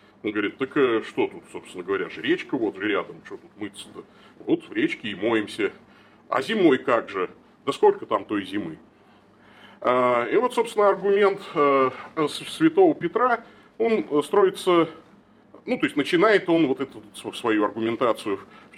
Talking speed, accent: 150 wpm, native